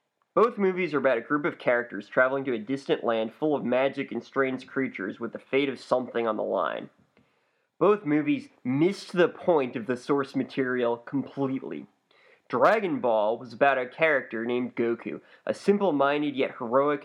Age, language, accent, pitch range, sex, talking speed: 20-39, English, American, 125-155 Hz, male, 175 wpm